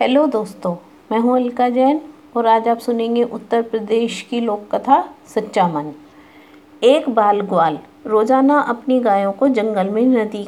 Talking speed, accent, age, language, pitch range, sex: 155 wpm, native, 50-69, Hindi, 195-265 Hz, female